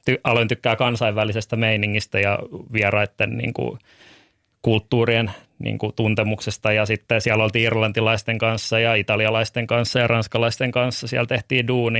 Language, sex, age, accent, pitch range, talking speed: Finnish, male, 20-39, native, 110-125 Hz, 135 wpm